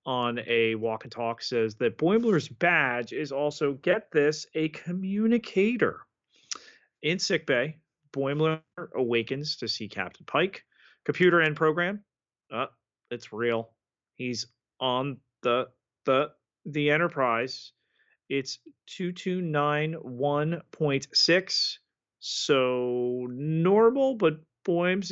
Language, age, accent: English, 30-49, American